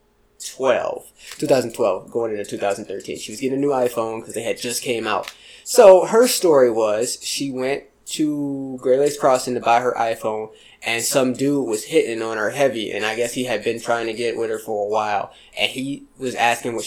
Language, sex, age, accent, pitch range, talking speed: English, male, 20-39, American, 120-165 Hz, 205 wpm